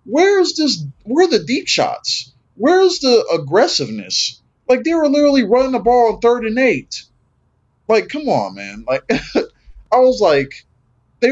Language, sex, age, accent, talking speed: English, male, 20-39, American, 155 wpm